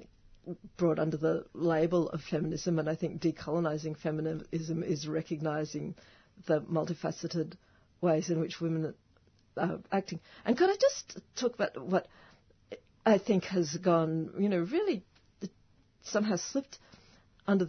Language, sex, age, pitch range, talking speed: English, female, 50-69, 160-185 Hz, 130 wpm